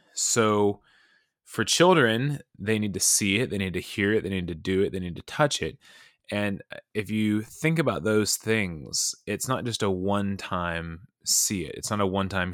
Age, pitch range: 20-39, 95-125 Hz